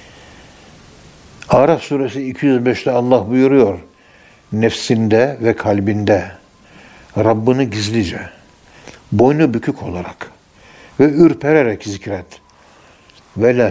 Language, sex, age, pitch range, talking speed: Turkish, male, 60-79, 105-130 Hz, 75 wpm